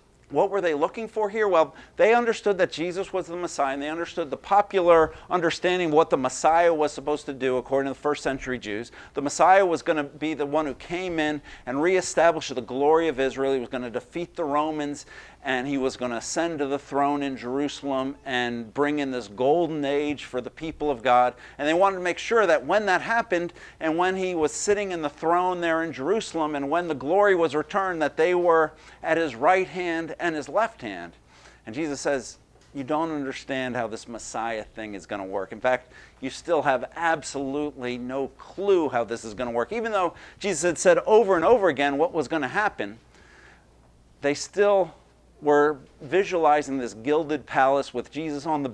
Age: 50-69